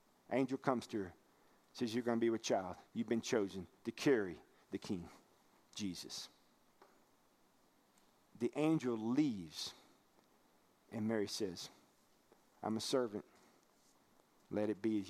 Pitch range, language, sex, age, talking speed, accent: 125-175 Hz, English, male, 50-69, 125 wpm, American